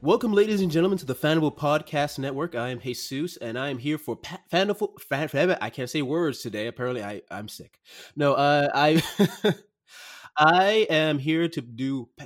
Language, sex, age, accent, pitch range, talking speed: English, male, 30-49, American, 120-155 Hz, 190 wpm